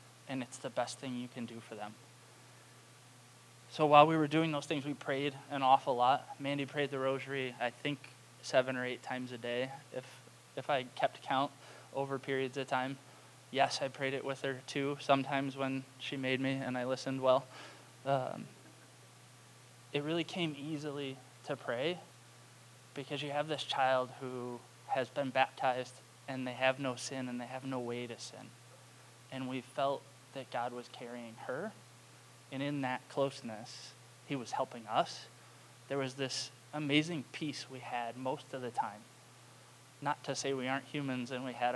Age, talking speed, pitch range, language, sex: 20-39, 175 wpm, 125-140 Hz, English, male